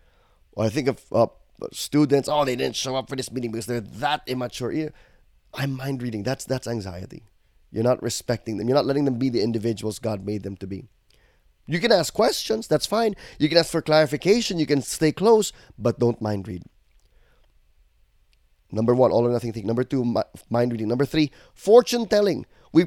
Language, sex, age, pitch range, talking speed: English, male, 20-39, 115-165 Hz, 200 wpm